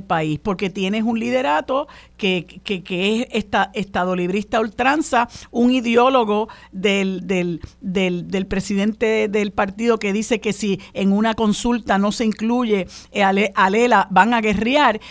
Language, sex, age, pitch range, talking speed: Spanish, female, 50-69, 200-260 Hz, 145 wpm